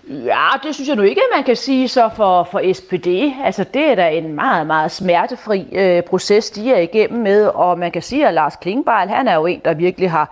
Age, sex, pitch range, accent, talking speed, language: 30-49, female, 180-235 Hz, native, 245 wpm, Danish